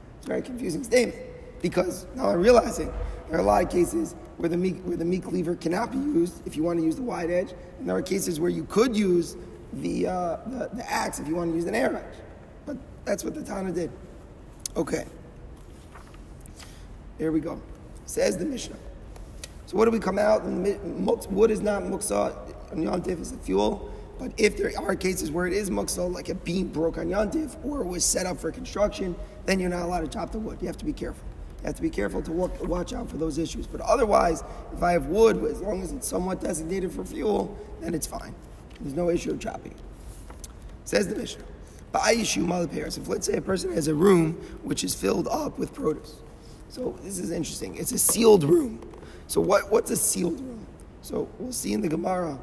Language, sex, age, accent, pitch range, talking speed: English, male, 30-49, American, 170-210 Hz, 215 wpm